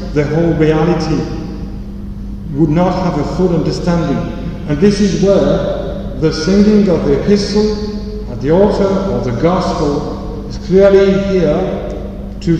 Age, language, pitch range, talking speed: 50-69, English, 140-185 Hz, 140 wpm